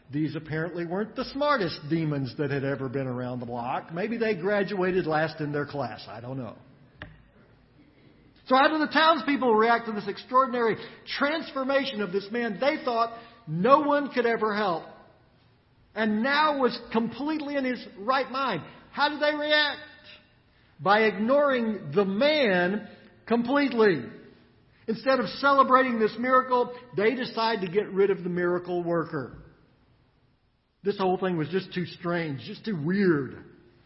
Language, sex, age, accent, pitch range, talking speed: English, male, 50-69, American, 150-230 Hz, 150 wpm